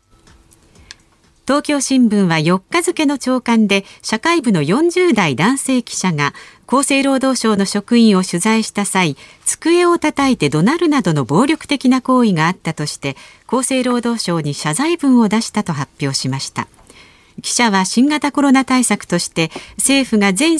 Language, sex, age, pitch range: Japanese, female, 50-69, 170-265 Hz